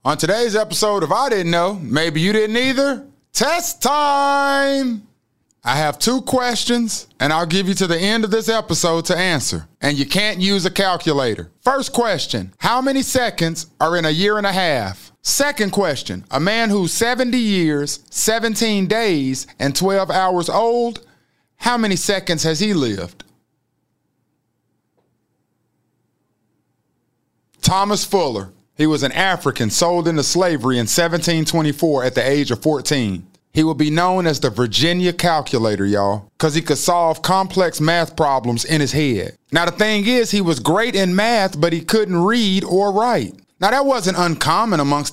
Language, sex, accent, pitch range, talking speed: English, male, American, 155-210 Hz, 160 wpm